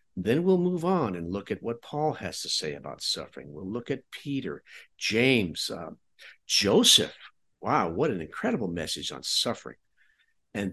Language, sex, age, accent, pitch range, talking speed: English, male, 60-79, American, 95-150 Hz, 160 wpm